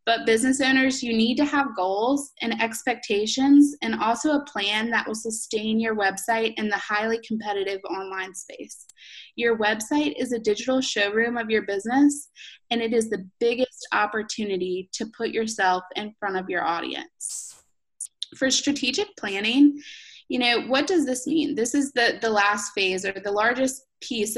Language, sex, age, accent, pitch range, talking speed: English, female, 20-39, American, 210-265 Hz, 165 wpm